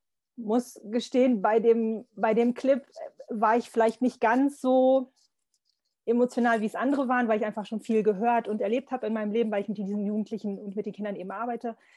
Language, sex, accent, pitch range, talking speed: German, female, German, 200-230 Hz, 205 wpm